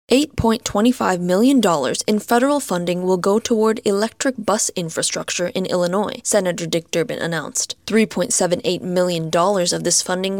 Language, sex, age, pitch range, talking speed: English, female, 10-29, 175-220 Hz, 120 wpm